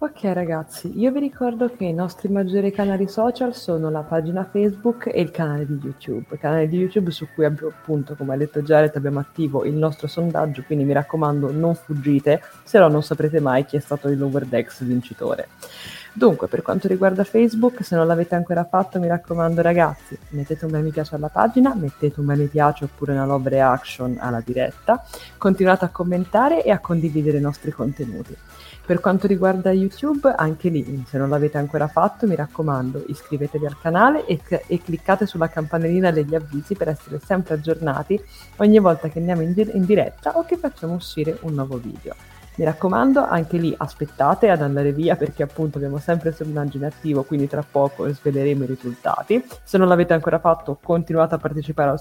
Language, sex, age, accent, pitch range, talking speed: Italian, female, 20-39, native, 145-180 Hz, 190 wpm